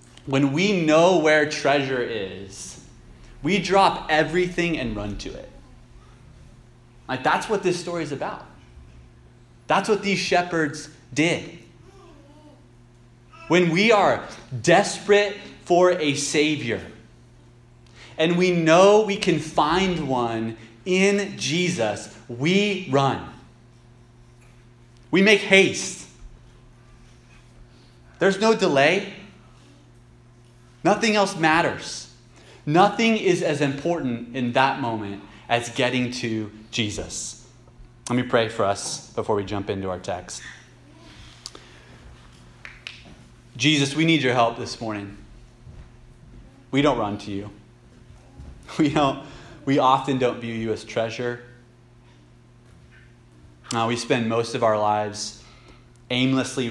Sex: male